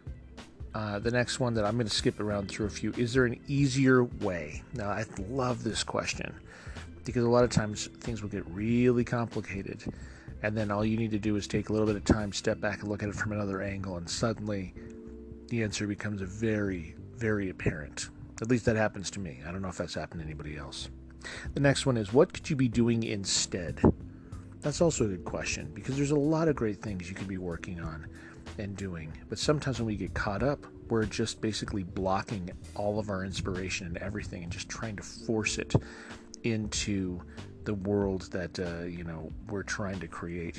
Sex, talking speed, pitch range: male, 210 wpm, 90-115 Hz